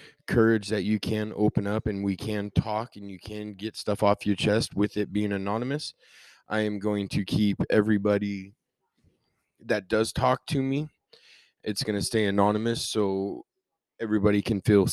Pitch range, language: 100-115 Hz, English